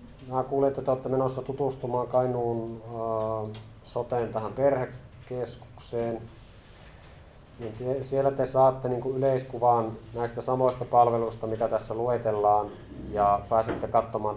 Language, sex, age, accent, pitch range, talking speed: Finnish, male, 30-49, native, 110-125 Hz, 95 wpm